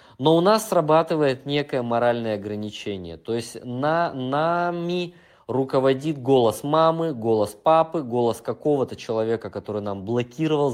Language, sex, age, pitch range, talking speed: Russian, male, 20-39, 100-135 Hz, 115 wpm